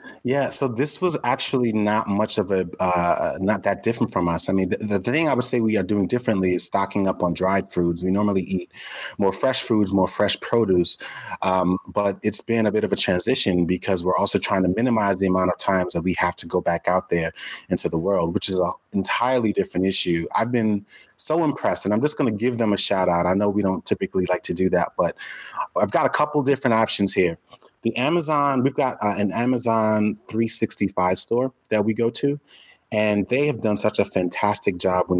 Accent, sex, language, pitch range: American, male, English, 95-115 Hz